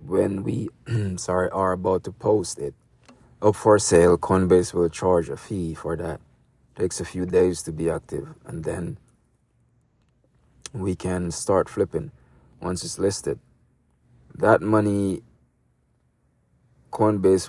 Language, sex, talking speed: English, male, 130 wpm